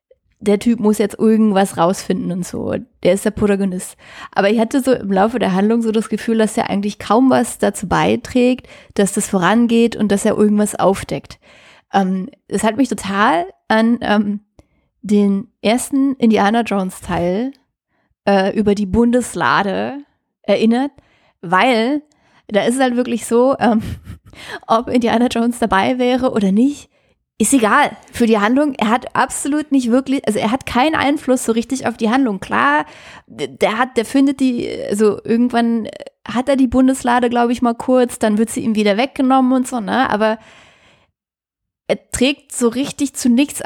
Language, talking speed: German, 165 wpm